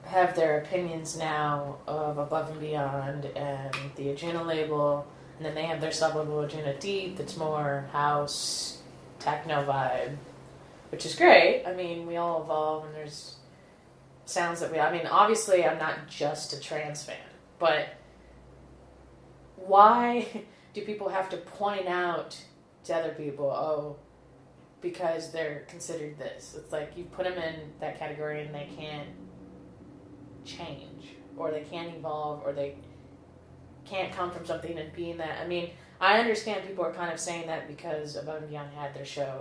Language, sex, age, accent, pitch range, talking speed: English, female, 20-39, American, 145-170 Hz, 160 wpm